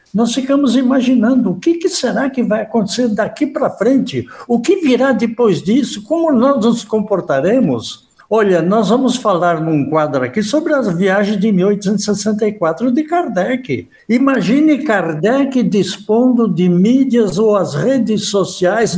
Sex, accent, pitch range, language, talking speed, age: male, Brazilian, 185-245 Hz, Portuguese, 140 wpm, 60-79